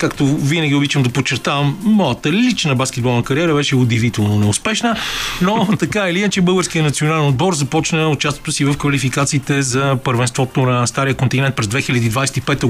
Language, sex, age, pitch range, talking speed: Bulgarian, male, 40-59, 135-175 Hz, 165 wpm